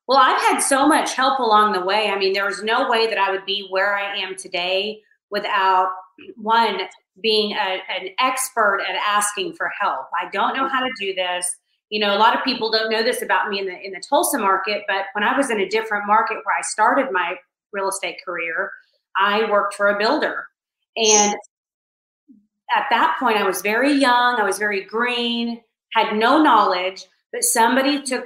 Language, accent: English, American